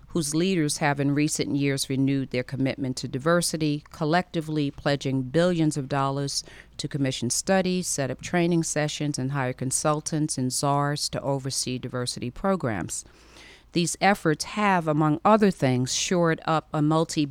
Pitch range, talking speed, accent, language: 135-165 Hz, 145 wpm, American, English